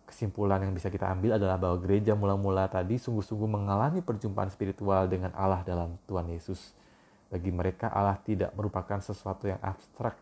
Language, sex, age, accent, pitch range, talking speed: Indonesian, male, 20-39, native, 90-100 Hz, 160 wpm